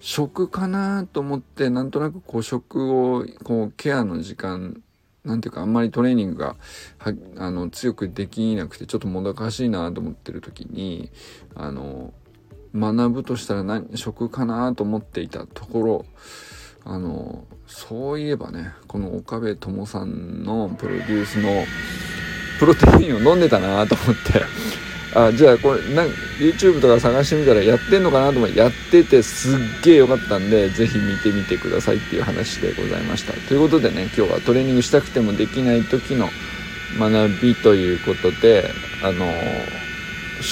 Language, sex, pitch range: Japanese, male, 105-140 Hz